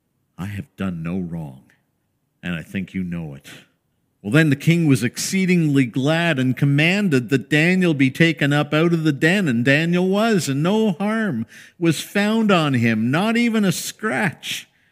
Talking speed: 175 wpm